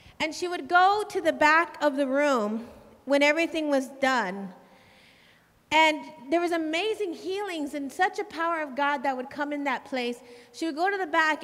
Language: English